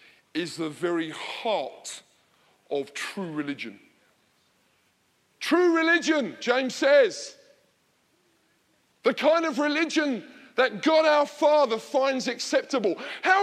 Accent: British